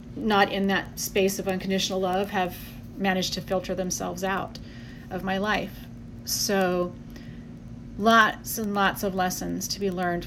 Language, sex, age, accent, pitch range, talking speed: English, female, 30-49, American, 180-205 Hz, 145 wpm